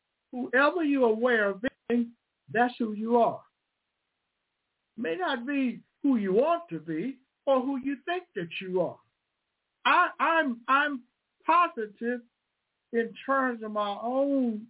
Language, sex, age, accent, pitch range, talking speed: English, male, 60-79, American, 225-270 Hz, 145 wpm